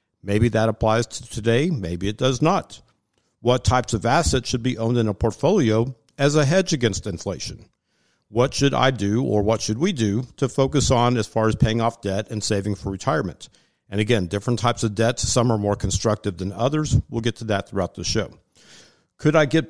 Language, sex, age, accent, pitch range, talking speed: English, male, 50-69, American, 105-135 Hz, 205 wpm